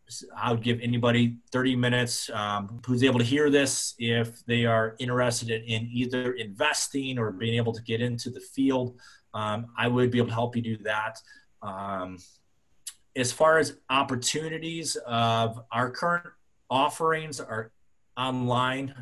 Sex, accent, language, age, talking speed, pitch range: male, American, English, 30-49, 150 wpm, 115-130 Hz